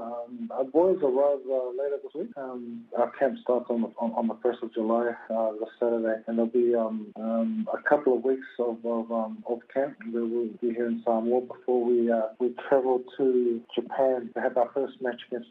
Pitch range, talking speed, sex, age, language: 115-130 Hz, 215 wpm, male, 50-69, English